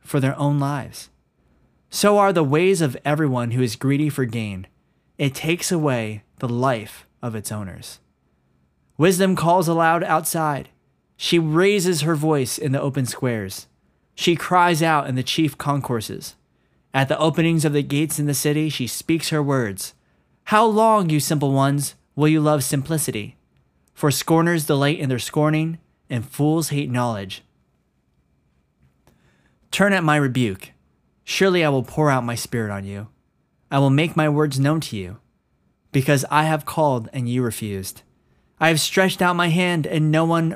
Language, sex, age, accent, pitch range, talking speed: English, male, 20-39, American, 110-155 Hz, 165 wpm